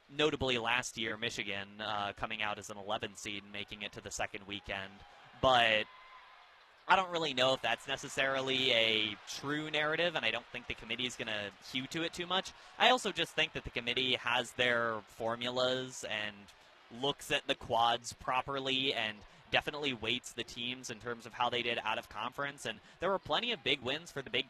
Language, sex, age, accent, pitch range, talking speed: English, male, 20-39, American, 115-140 Hz, 205 wpm